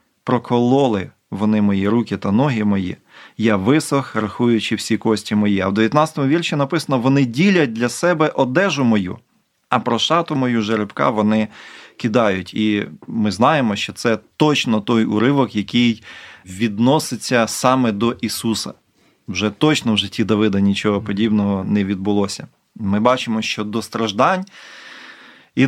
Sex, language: male, Ukrainian